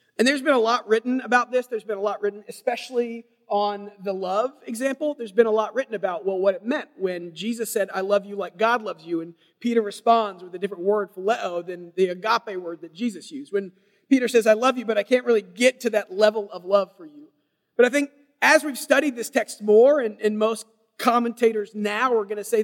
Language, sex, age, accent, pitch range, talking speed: English, male, 40-59, American, 205-255 Hz, 235 wpm